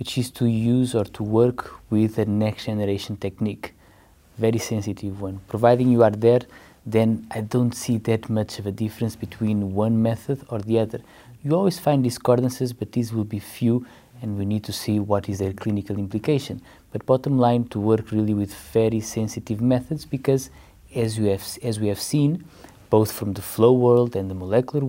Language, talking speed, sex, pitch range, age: English, 185 wpm, male, 100-120 Hz, 20-39